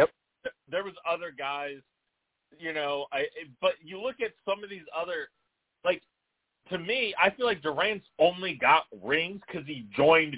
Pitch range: 130-160 Hz